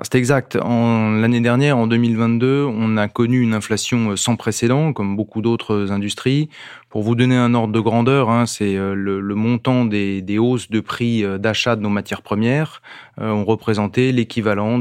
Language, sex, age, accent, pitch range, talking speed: French, male, 30-49, French, 100-120 Hz, 175 wpm